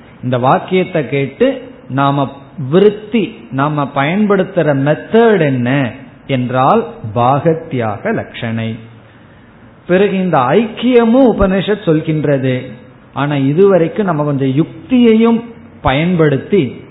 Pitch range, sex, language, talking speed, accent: 130-180 Hz, male, Tamil, 75 wpm, native